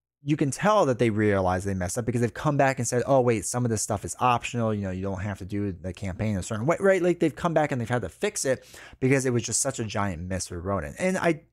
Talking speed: 300 wpm